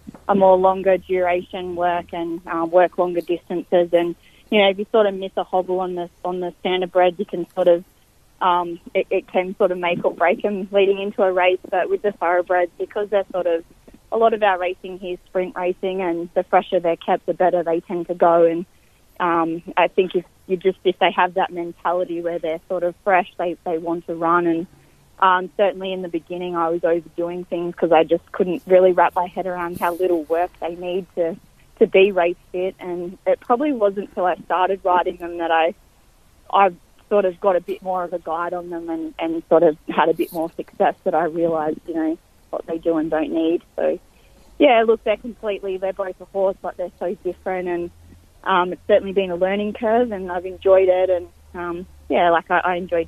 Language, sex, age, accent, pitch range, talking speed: English, female, 20-39, Australian, 170-190 Hz, 225 wpm